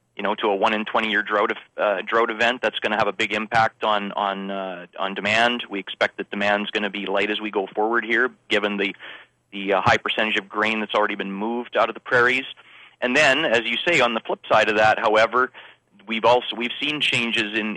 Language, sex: English, male